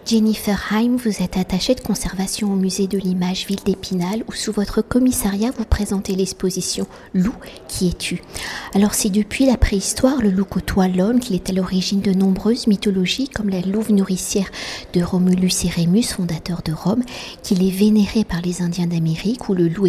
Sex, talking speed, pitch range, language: female, 180 wpm, 180-215 Hz, French